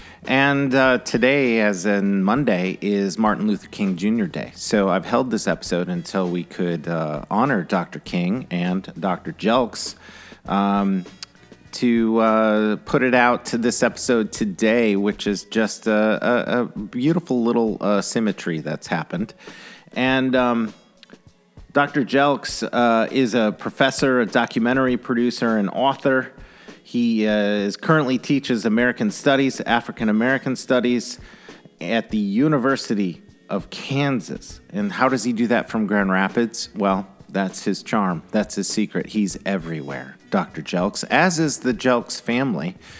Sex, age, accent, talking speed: male, 40-59, American, 140 wpm